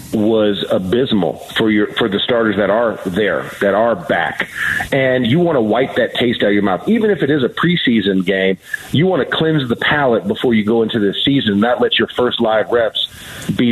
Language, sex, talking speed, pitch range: English, male, 220 wpm, 115-155 Hz